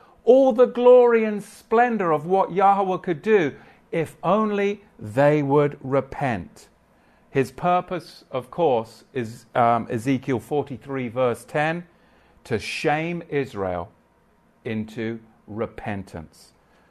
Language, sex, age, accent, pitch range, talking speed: English, male, 50-69, British, 125-180 Hz, 105 wpm